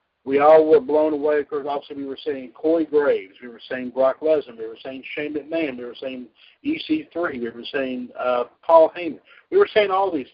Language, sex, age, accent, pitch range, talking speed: English, male, 50-69, American, 130-190 Hz, 215 wpm